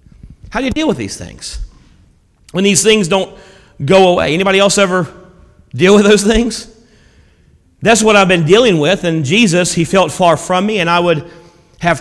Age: 40-59